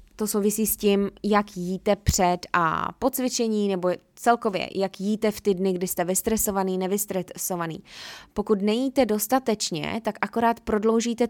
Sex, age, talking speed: female, 20-39, 145 wpm